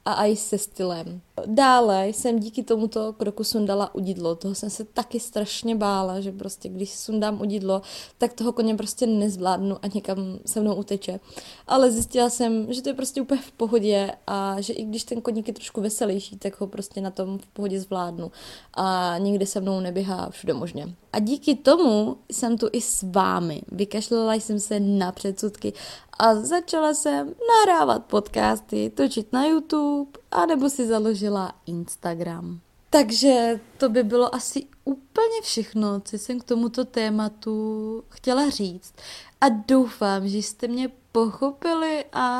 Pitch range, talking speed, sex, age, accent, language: 200-250 Hz, 160 wpm, female, 20-39, native, Czech